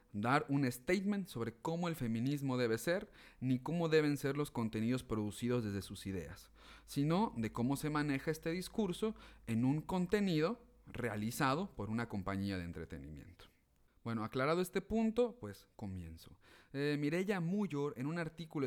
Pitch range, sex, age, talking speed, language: 115-170 Hz, male, 30-49, 150 wpm, Spanish